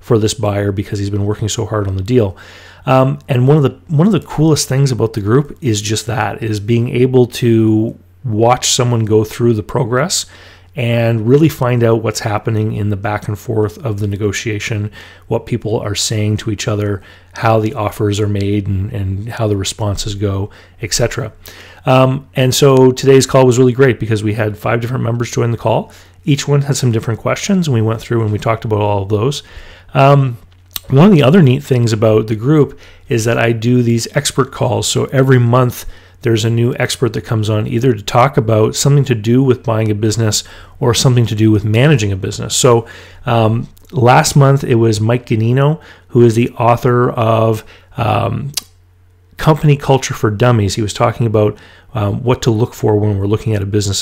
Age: 30-49